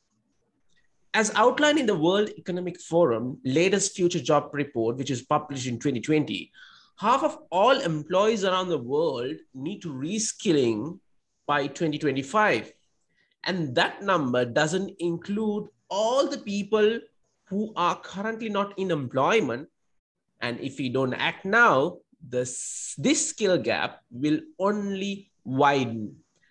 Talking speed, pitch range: 125 wpm, 150-220 Hz